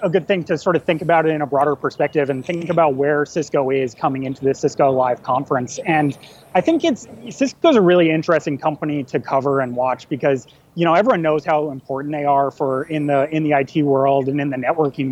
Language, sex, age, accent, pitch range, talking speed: English, male, 30-49, American, 140-175 Hz, 230 wpm